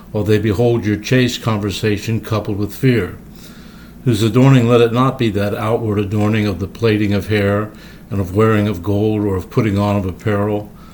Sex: male